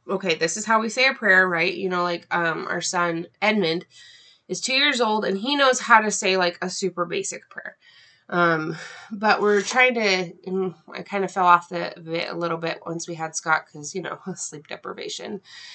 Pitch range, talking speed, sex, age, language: 180-220 Hz, 210 wpm, female, 20-39, English